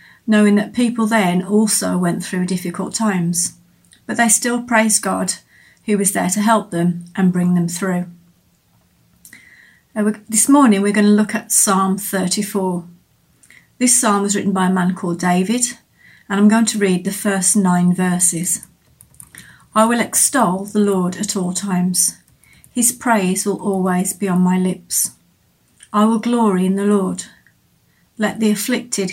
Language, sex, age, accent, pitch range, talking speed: English, female, 40-59, British, 185-220 Hz, 155 wpm